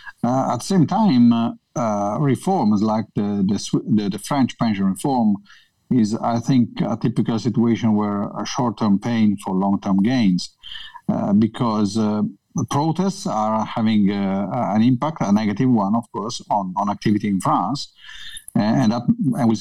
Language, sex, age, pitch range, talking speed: English, male, 50-69, 100-150 Hz, 165 wpm